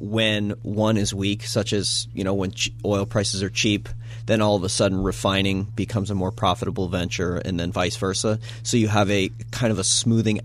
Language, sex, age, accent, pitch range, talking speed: English, male, 30-49, American, 100-115 Hz, 205 wpm